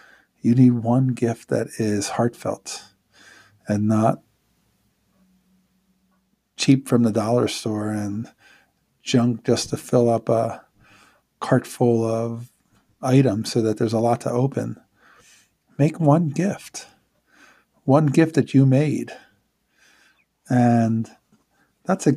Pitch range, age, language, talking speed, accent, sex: 115-140 Hz, 50-69, English, 115 wpm, American, male